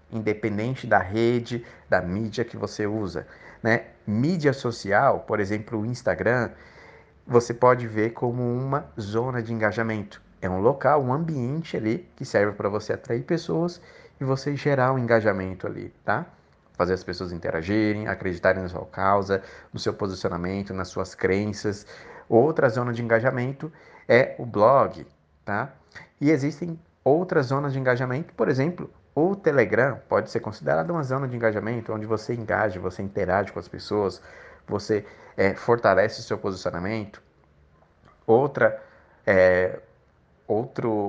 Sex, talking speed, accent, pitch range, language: male, 140 wpm, Brazilian, 105-135 Hz, Portuguese